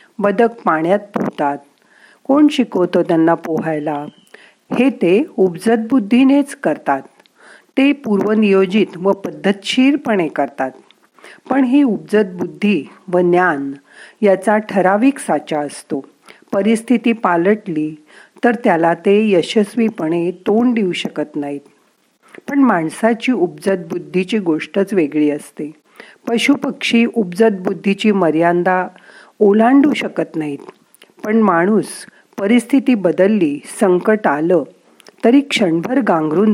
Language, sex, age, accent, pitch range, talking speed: Marathi, female, 50-69, native, 175-235 Hz, 95 wpm